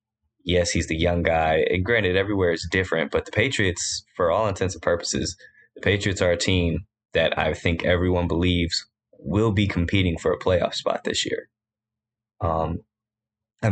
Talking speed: 170 wpm